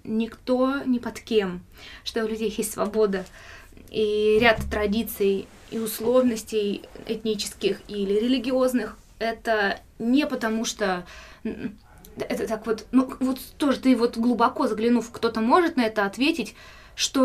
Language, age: Russian, 20-39